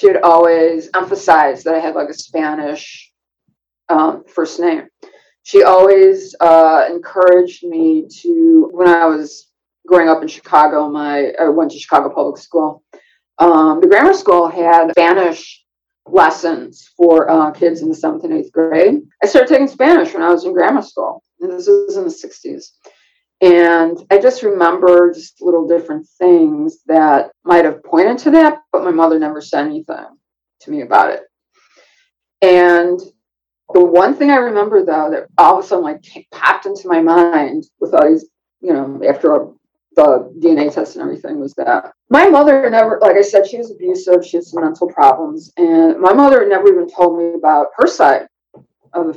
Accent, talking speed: American, 175 wpm